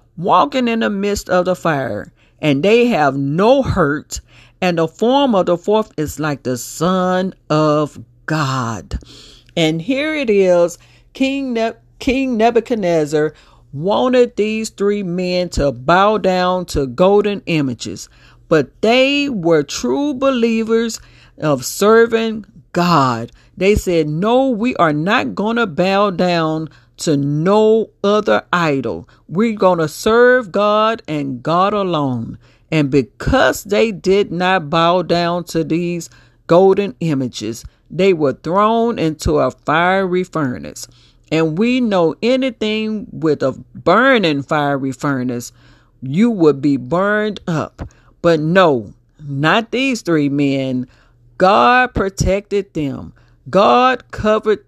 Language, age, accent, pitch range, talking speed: English, 50-69, American, 145-215 Hz, 125 wpm